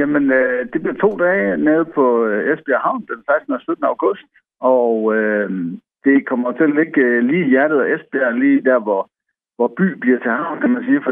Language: Danish